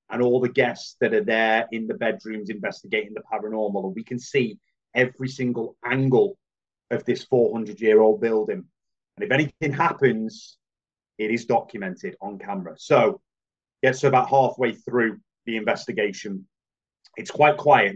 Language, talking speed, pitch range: English, 145 wpm, 120-140 Hz